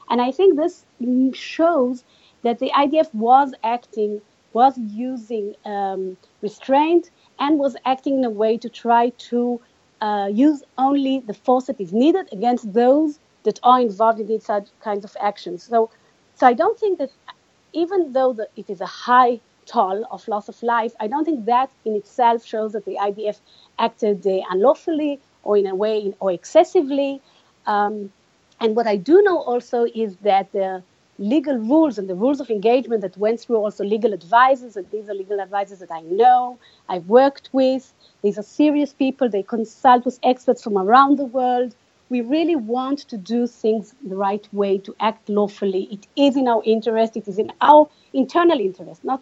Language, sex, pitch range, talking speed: English, female, 205-265 Hz, 180 wpm